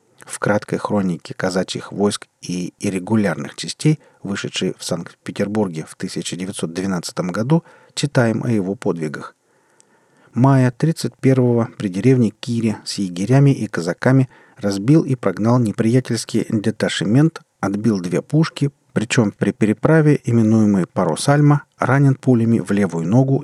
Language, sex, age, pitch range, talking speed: Russian, male, 40-59, 100-135 Hz, 115 wpm